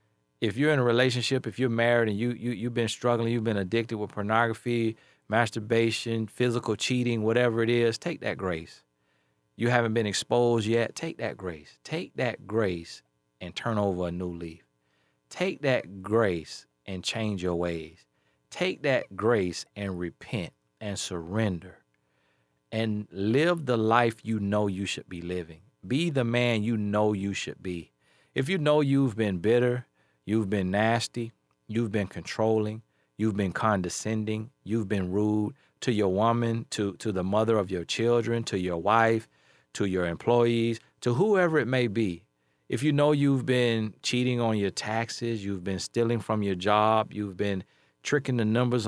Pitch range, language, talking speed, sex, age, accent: 90-120 Hz, English, 165 wpm, male, 40-59, American